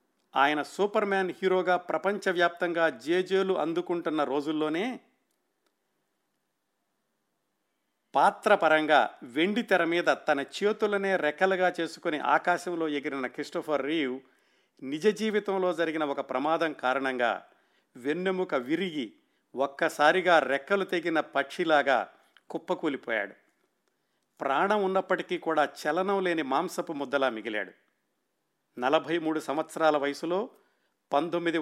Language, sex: Telugu, male